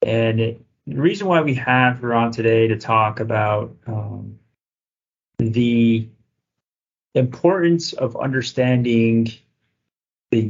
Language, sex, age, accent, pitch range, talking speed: English, male, 30-49, American, 110-125 Hz, 105 wpm